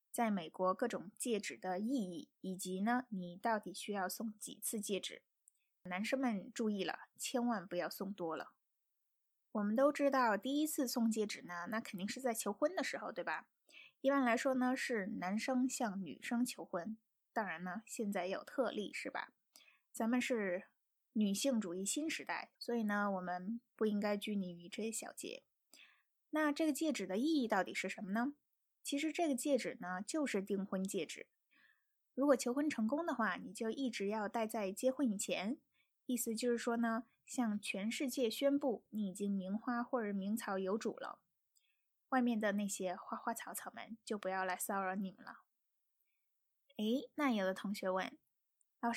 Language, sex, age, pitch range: Chinese, female, 20-39, 200-260 Hz